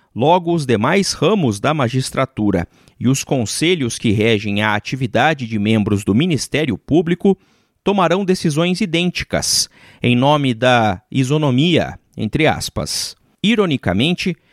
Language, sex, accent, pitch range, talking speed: Portuguese, male, Brazilian, 115-165 Hz, 115 wpm